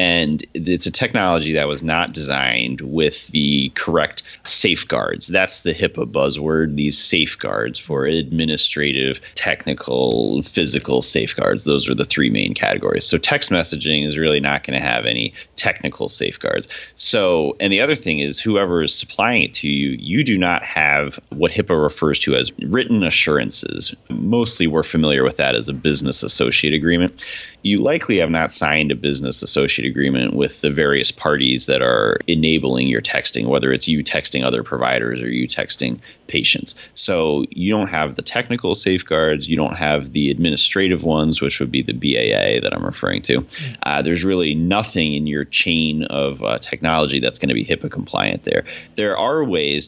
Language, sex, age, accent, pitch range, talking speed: English, male, 30-49, American, 70-80 Hz, 170 wpm